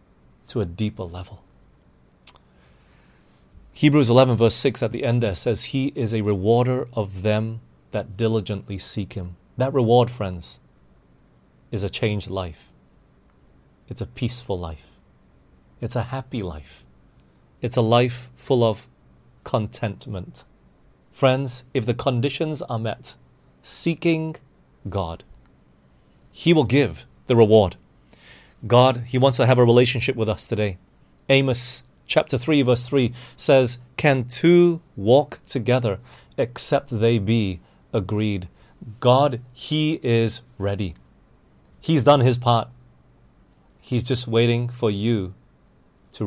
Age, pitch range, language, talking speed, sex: 30-49, 90-125 Hz, English, 125 wpm, male